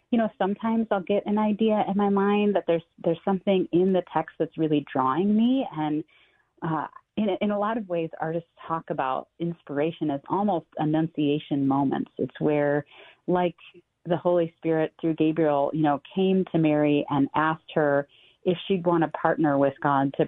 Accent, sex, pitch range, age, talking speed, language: American, female, 150-180 Hz, 30-49, 180 wpm, English